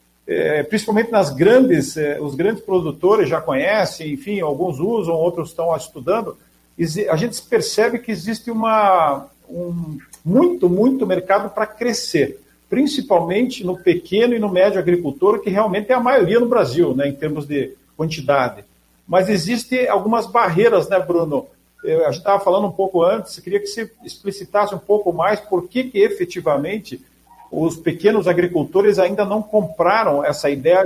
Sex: male